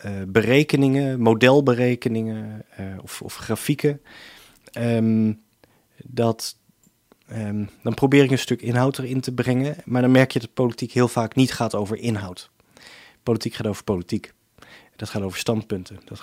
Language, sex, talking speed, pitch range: Dutch, male, 150 wpm, 110-130 Hz